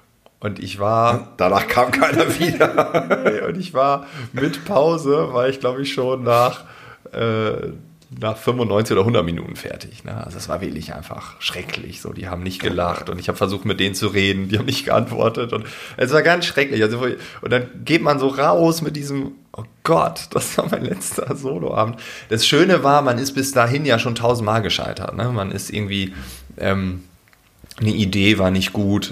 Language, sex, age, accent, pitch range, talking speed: German, male, 30-49, German, 95-130 Hz, 190 wpm